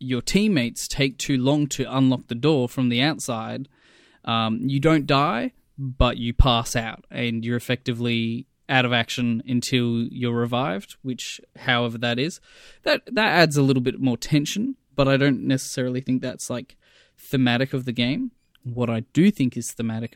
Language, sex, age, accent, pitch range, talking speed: English, male, 20-39, Australian, 120-140 Hz, 175 wpm